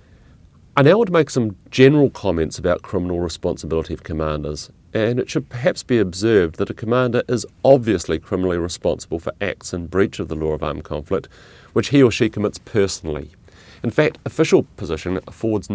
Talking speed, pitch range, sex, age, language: 180 wpm, 85-115 Hz, male, 40-59, English